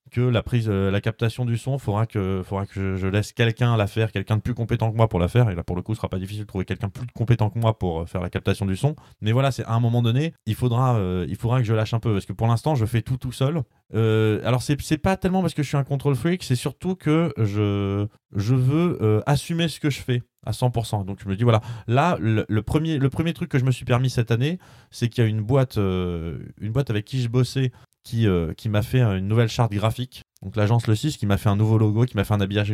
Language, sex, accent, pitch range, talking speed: French, male, French, 100-125 Hz, 290 wpm